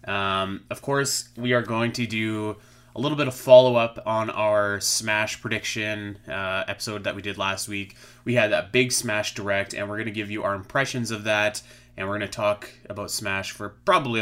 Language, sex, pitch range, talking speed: English, male, 100-120 Hz, 205 wpm